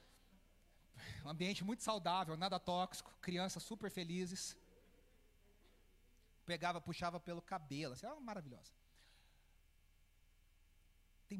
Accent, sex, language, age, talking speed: Brazilian, male, Portuguese, 40-59, 95 wpm